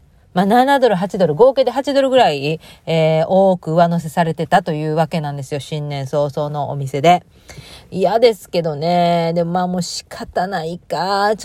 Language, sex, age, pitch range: Japanese, female, 40-59, 160-235 Hz